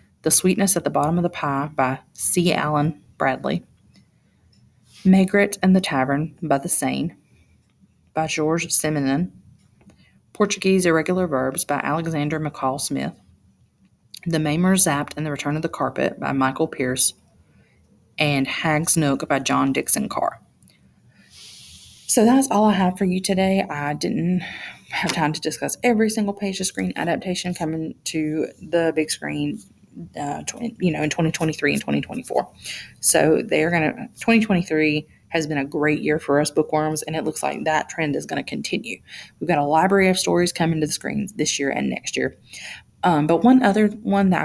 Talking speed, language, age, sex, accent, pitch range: 165 wpm, English, 30-49, female, American, 150-185 Hz